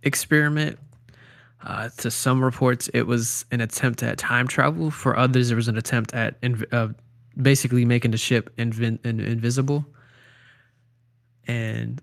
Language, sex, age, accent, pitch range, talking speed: English, male, 20-39, American, 115-130 Hz, 145 wpm